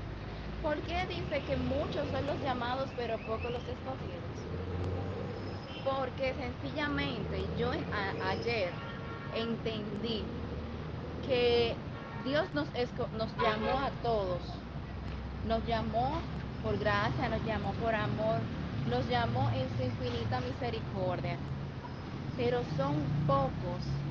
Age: 20-39